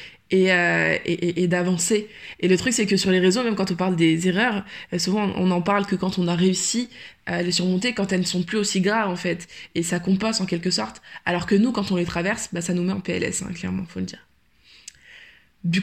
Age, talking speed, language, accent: 20-39, 255 wpm, French, French